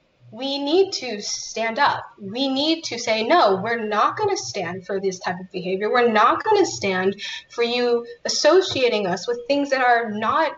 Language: English